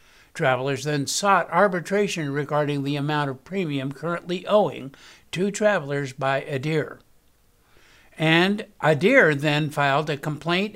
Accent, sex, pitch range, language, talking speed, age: American, male, 145-190 Hz, English, 115 wpm, 60-79